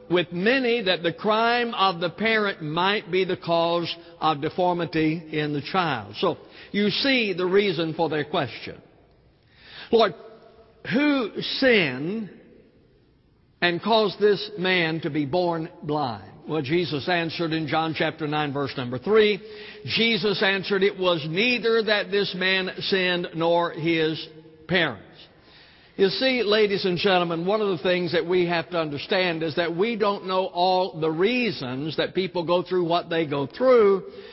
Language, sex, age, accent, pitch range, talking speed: English, male, 60-79, American, 170-215 Hz, 155 wpm